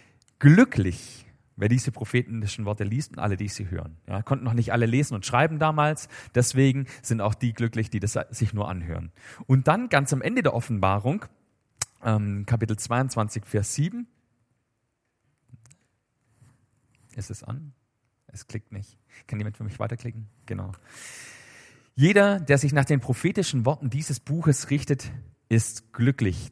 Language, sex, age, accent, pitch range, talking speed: German, male, 40-59, German, 115-140 Hz, 145 wpm